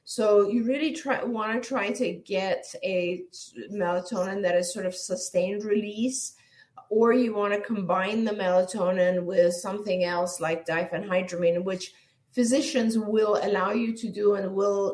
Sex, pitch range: female, 180-225 Hz